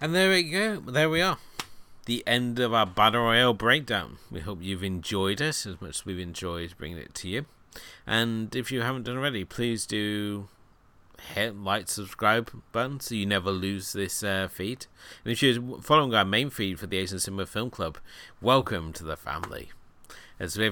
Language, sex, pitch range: English, male, 90-115 Hz